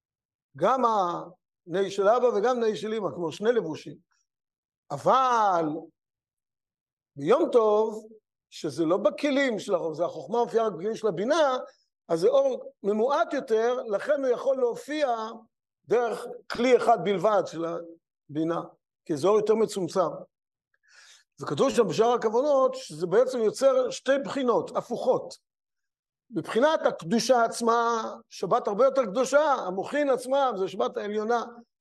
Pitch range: 210-275 Hz